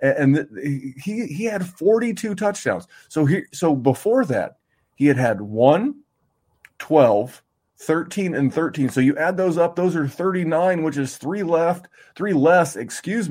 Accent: American